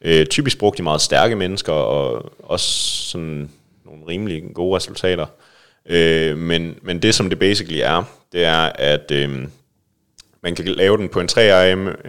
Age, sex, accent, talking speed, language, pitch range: 30-49, male, Danish, 150 wpm, English, 75-90 Hz